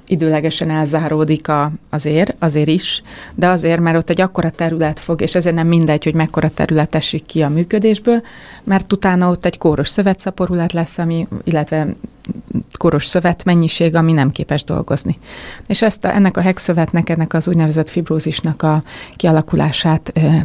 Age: 30-49